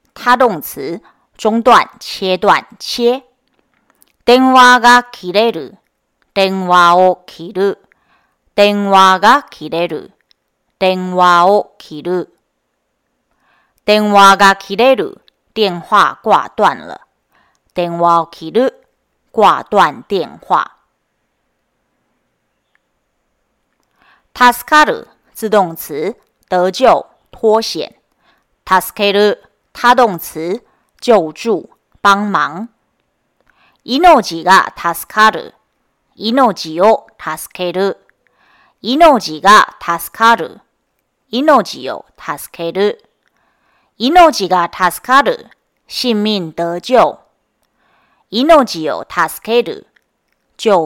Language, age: Japanese, 40-59